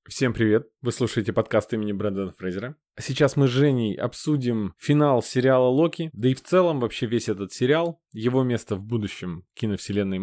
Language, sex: Russian, male